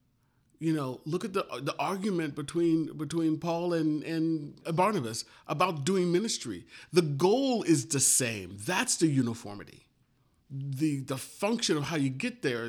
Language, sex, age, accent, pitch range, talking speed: English, male, 40-59, American, 140-190 Hz, 150 wpm